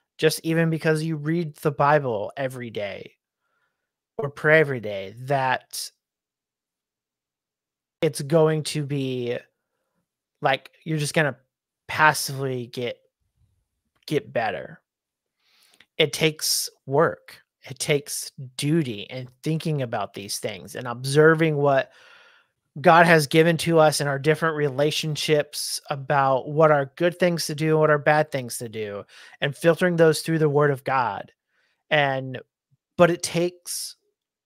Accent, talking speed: American, 130 wpm